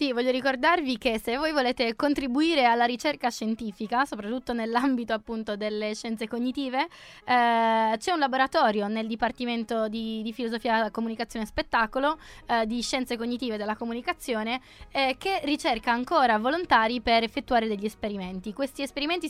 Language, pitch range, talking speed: Italian, 225-275 Hz, 135 wpm